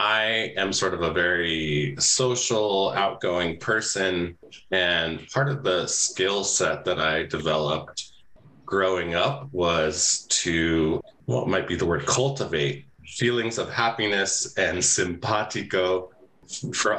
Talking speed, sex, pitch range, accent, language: 120 wpm, male, 85-115 Hz, American, English